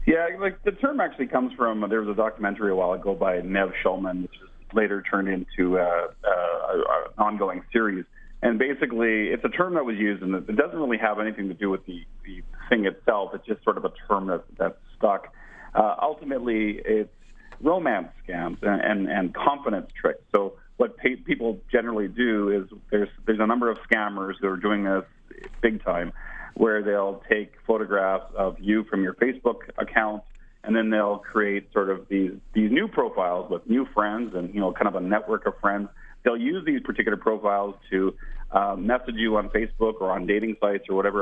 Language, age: English, 40-59